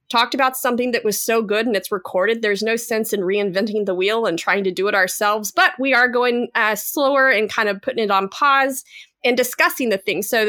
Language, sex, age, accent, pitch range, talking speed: English, female, 30-49, American, 205-245 Hz, 235 wpm